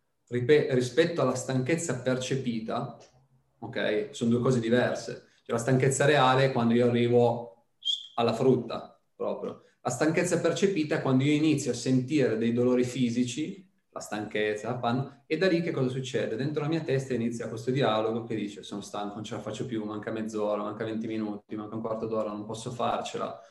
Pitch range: 115-130 Hz